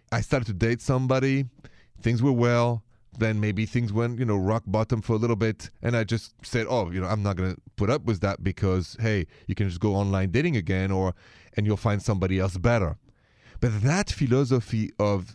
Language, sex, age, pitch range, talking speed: English, male, 30-49, 100-130 Hz, 215 wpm